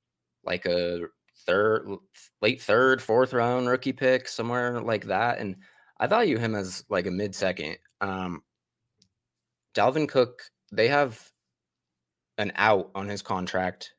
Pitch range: 95-110 Hz